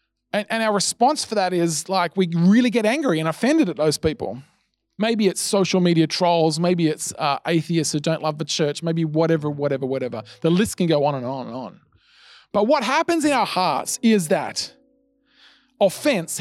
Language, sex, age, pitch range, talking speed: English, male, 20-39, 160-215 Hz, 190 wpm